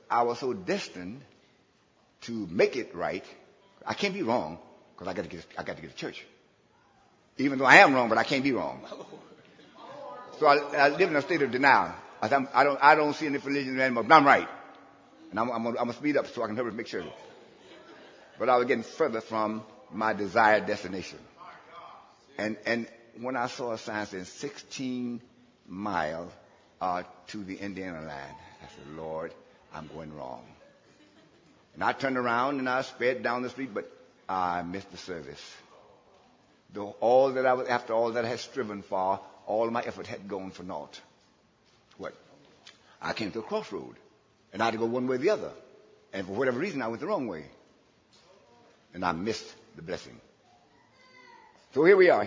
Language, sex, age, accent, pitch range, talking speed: English, male, 60-79, American, 100-145 Hz, 180 wpm